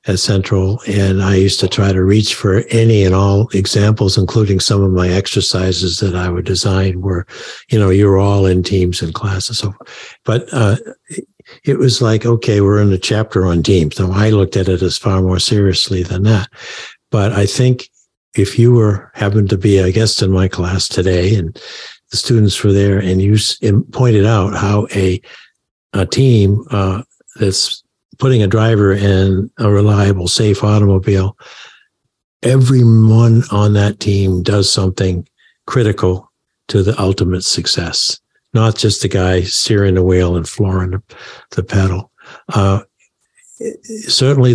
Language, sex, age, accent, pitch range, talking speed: English, male, 60-79, American, 95-110 Hz, 165 wpm